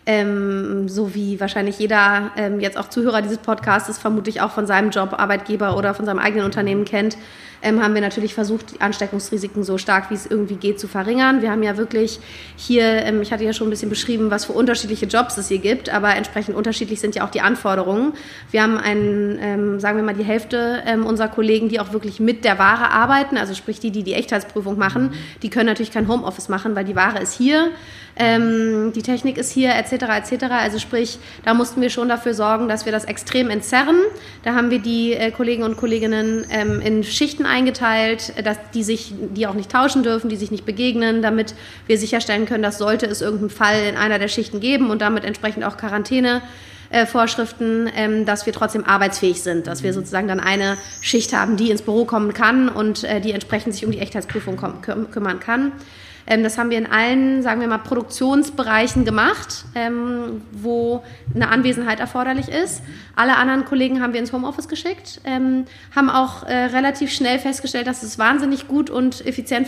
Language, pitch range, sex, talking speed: German, 210-240 Hz, female, 200 wpm